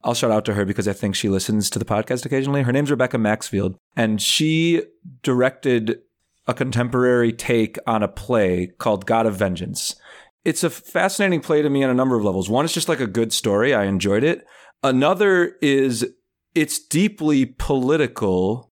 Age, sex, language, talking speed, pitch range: 30-49, male, English, 180 wpm, 110-150 Hz